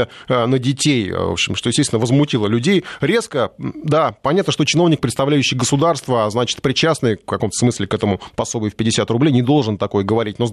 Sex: male